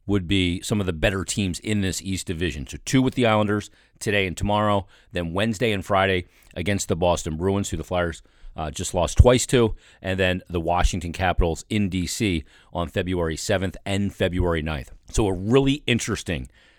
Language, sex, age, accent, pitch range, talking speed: English, male, 40-59, American, 85-105 Hz, 185 wpm